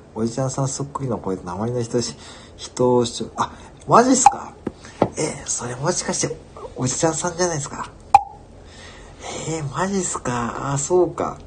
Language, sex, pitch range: Japanese, male, 90-140 Hz